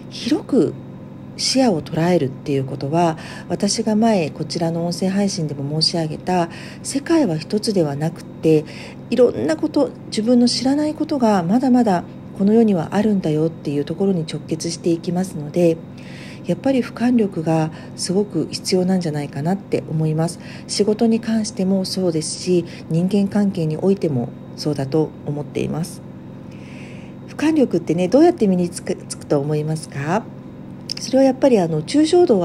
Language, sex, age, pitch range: Japanese, female, 50-69, 160-235 Hz